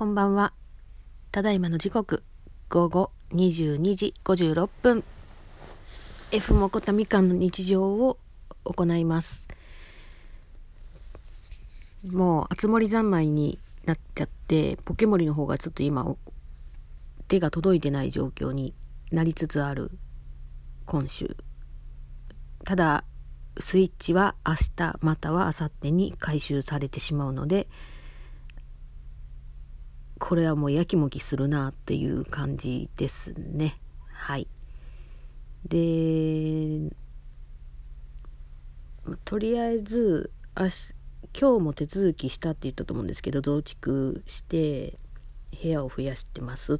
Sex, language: female, Japanese